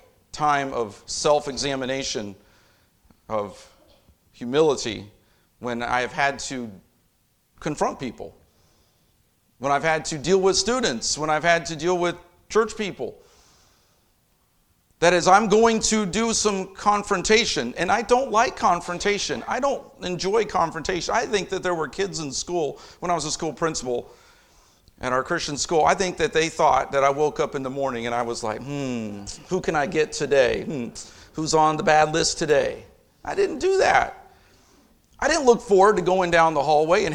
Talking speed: 170 wpm